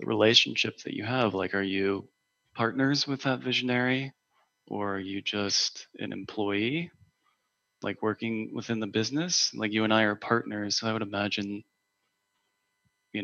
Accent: American